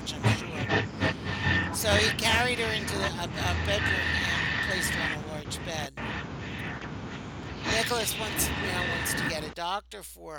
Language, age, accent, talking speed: English, 60-79, American, 155 wpm